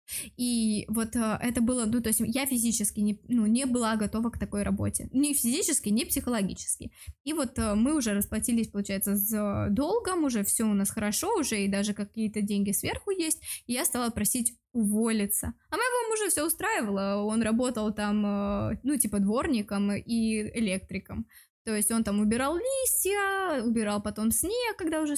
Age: 20-39